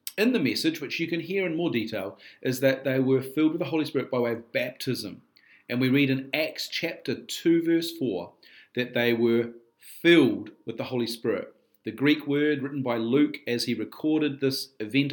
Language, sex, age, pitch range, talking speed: English, male, 40-59, 125-155 Hz, 200 wpm